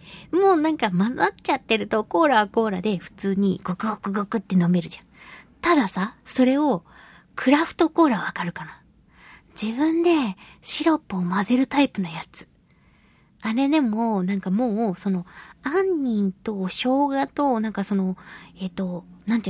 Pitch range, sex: 195-280 Hz, female